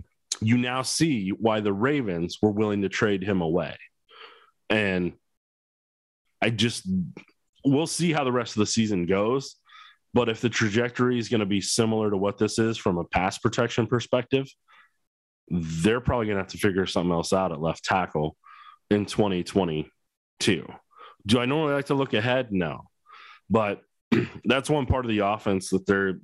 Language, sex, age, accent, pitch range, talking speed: English, male, 30-49, American, 95-120 Hz, 170 wpm